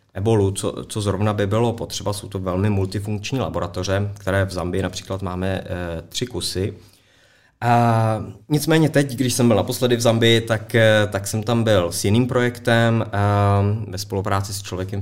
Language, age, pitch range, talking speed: Czech, 20-39, 90-100 Hz, 170 wpm